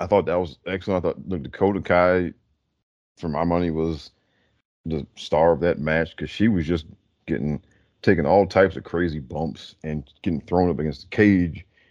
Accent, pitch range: American, 80-110 Hz